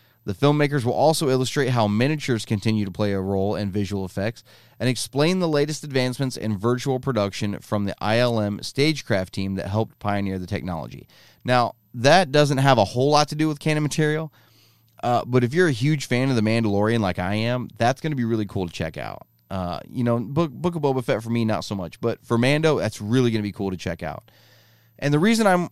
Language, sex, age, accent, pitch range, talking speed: English, male, 30-49, American, 100-130 Hz, 225 wpm